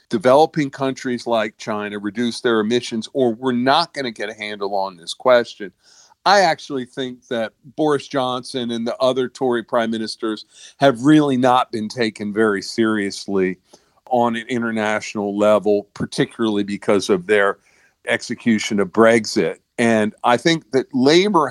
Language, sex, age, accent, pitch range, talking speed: English, male, 50-69, American, 110-130 Hz, 150 wpm